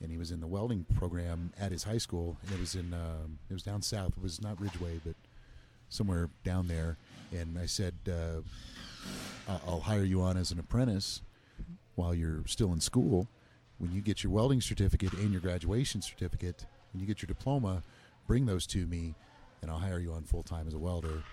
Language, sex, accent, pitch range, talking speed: English, male, American, 85-105 Hz, 205 wpm